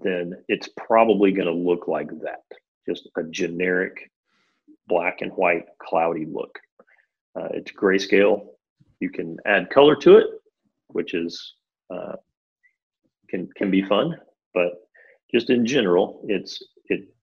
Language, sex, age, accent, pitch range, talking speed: English, male, 40-59, American, 90-100 Hz, 130 wpm